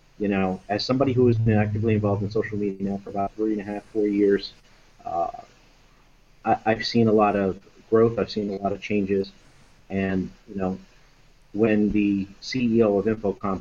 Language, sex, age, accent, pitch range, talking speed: English, male, 30-49, American, 100-125 Hz, 185 wpm